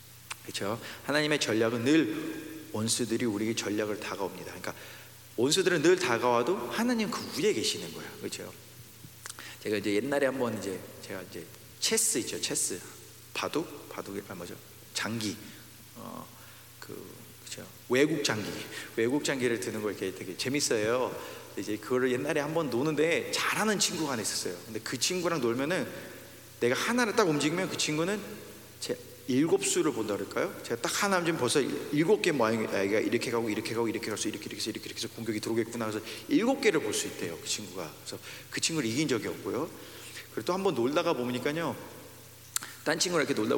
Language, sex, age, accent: Korean, male, 40-59, native